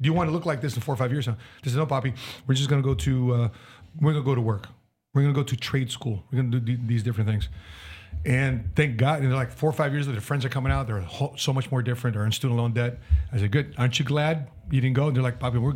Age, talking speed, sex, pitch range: 40-59, 310 wpm, male, 120-155 Hz